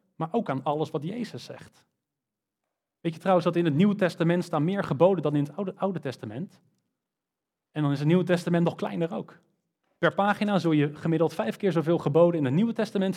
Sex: male